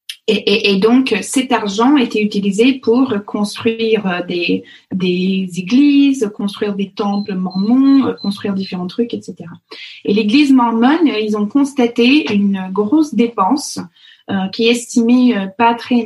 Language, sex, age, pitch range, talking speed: French, female, 20-39, 190-240 Hz, 135 wpm